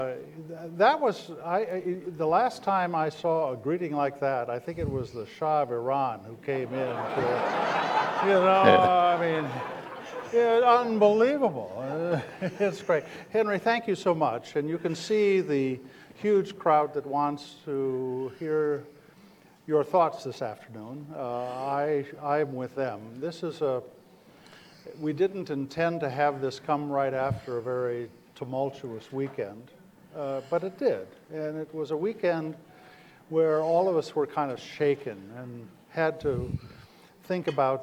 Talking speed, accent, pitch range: 150 wpm, American, 130-175 Hz